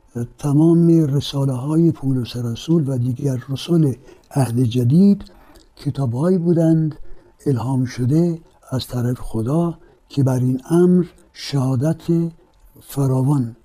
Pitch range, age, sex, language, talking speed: 130-170 Hz, 60-79, male, Persian, 100 wpm